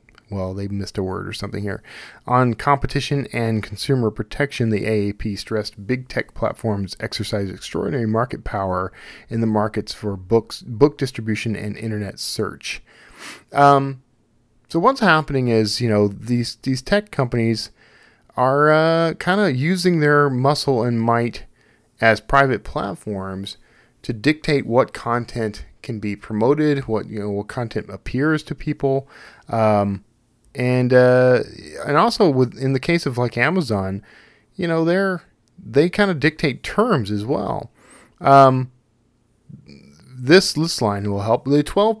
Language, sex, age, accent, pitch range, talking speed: English, male, 40-59, American, 105-140 Hz, 145 wpm